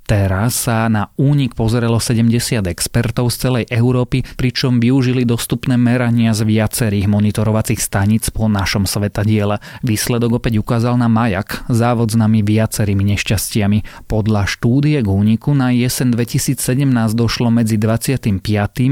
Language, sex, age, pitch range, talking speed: Slovak, male, 30-49, 105-120 Hz, 130 wpm